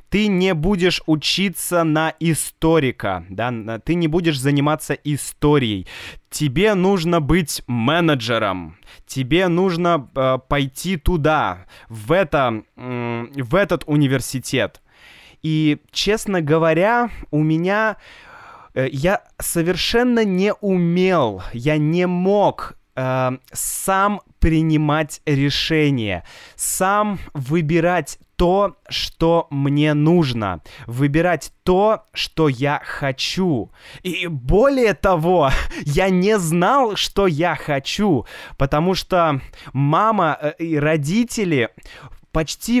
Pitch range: 135-185 Hz